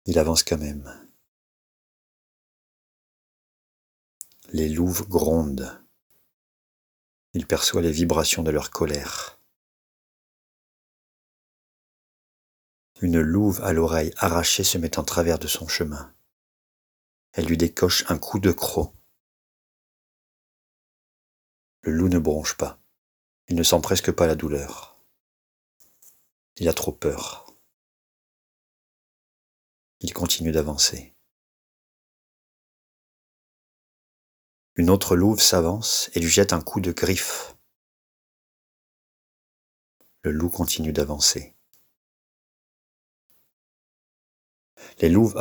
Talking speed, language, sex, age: 90 wpm, French, male, 50-69